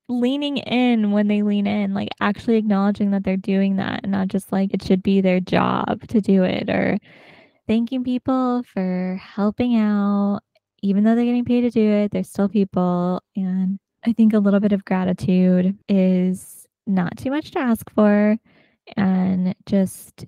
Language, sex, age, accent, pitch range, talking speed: English, female, 10-29, American, 190-220 Hz, 175 wpm